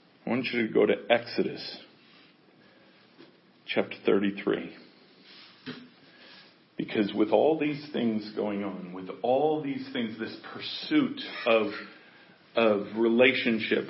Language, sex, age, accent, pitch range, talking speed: English, male, 40-59, American, 115-175 Hz, 110 wpm